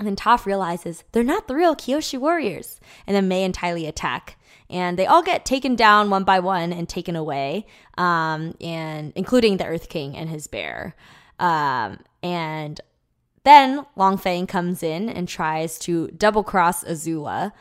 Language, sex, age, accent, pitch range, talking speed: English, female, 20-39, American, 165-205 Hz, 165 wpm